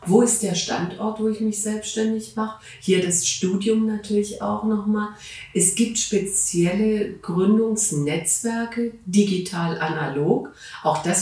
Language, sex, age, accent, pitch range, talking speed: German, female, 40-59, German, 175-215 Hz, 125 wpm